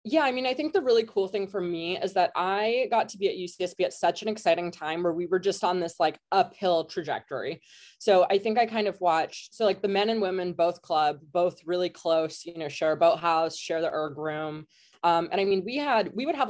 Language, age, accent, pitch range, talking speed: English, 20-39, American, 160-200 Hz, 250 wpm